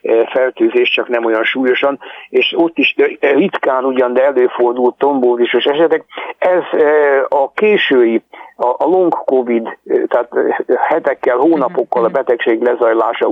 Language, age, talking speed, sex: Hungarian, 60-79, 115 wpm, male